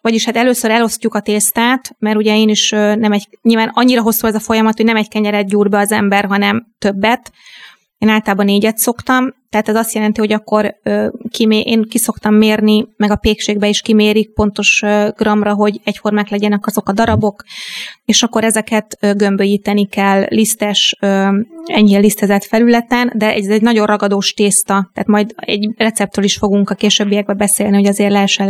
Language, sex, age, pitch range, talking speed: Hungarian, female, 20-39, 200-225 Hz, 175 wpm